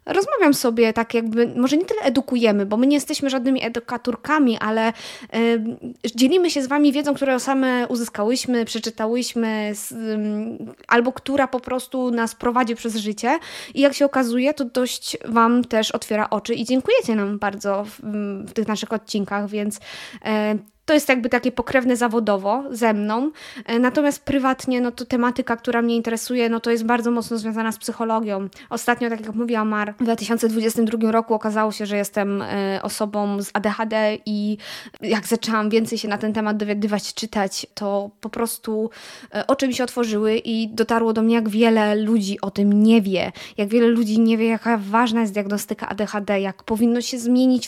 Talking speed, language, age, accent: 170 wpm, Polish, 20-39, native